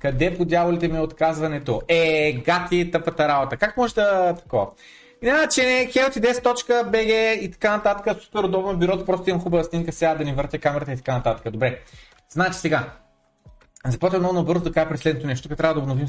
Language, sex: Bulgarian, male